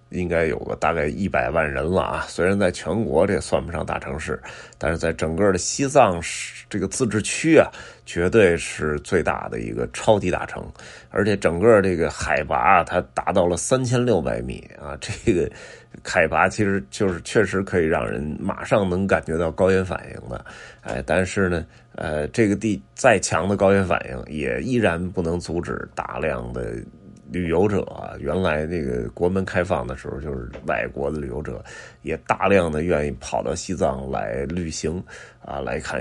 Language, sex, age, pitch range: Chinese, male, 20-39, 75-100 Hz